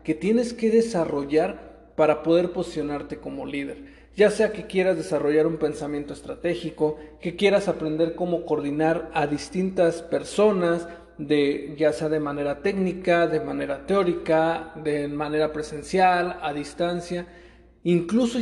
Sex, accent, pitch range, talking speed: male, Mexican, 150-185 Hz, 125 wpm